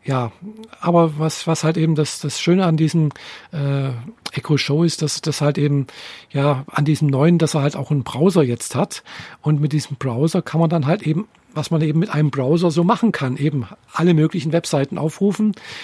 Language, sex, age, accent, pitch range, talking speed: German, male, 50-69, German, 145-180 Hz, 205 wpm